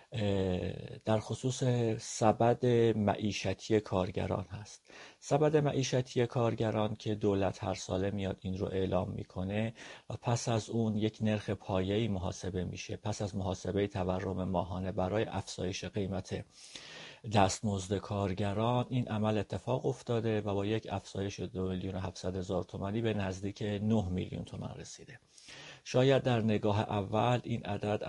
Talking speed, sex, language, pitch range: 135 wpm, male, Persian, 95-110 Hz